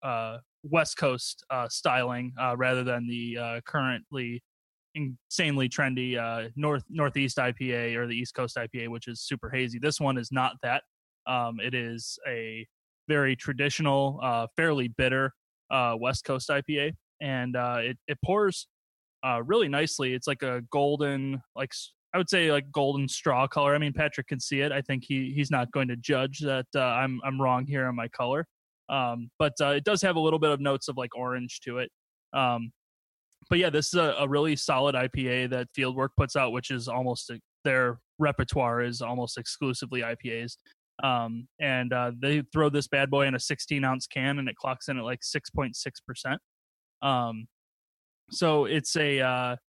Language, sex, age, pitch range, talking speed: English, male, 20-39, 125-145 Hz, 180 wpm